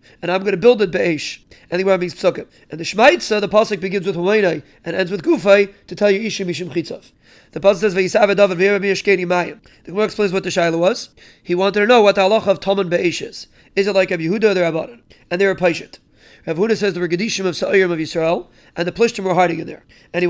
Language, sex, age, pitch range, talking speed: English, male, 30-49, 175-205 Hz, 250 wpm